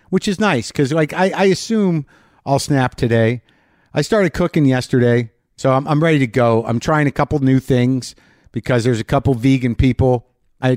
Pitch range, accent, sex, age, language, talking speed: 115-140 Hz, American, male, 50-69, English, 190 wpm